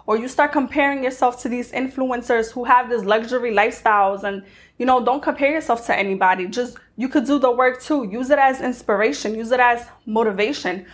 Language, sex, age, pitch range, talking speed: English, female, 20-39, 220-265 Hz, 195 wpm